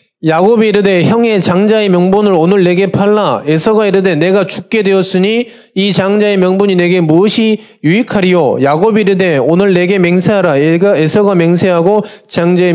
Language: Korean